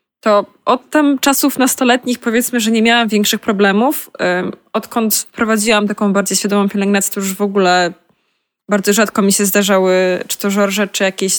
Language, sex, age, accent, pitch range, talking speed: Polish, female, 20-39, native, 195-220 Hz, 165 wpm